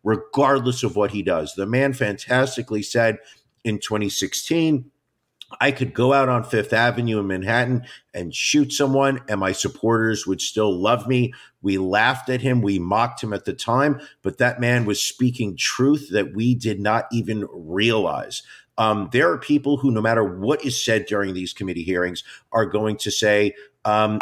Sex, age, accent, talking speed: male, 50-69, American, 175 wpm